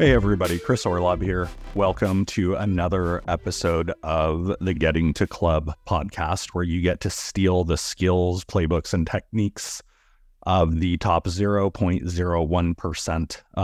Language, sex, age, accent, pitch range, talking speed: English, male, 30-49, American, 85-105 Hz, 130 wpm